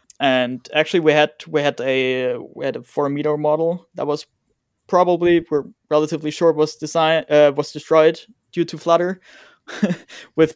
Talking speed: 165 wpm